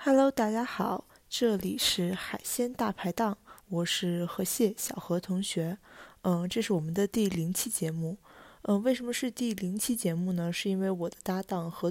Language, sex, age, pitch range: Chinese, female, 20-39, 170-205 Hz